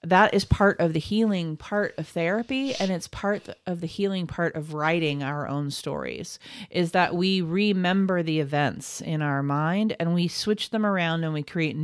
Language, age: English, 40-59